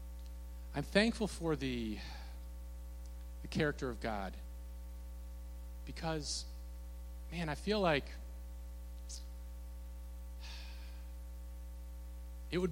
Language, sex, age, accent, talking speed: English, male, 40-59, American, 70 wpm